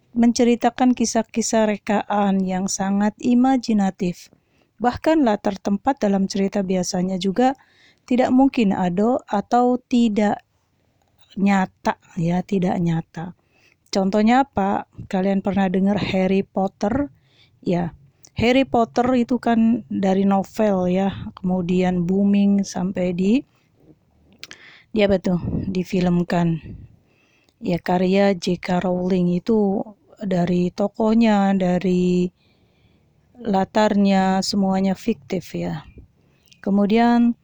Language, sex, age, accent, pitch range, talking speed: Indonesian, female, 30-49, native, 185-225 Hz, 90 wpm